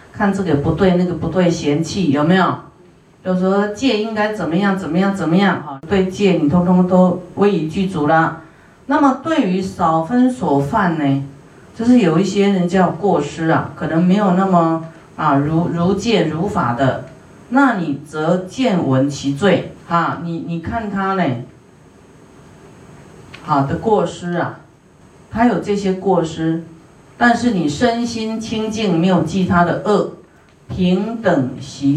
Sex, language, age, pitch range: female, Chinese, 40-59, 155-195 Hz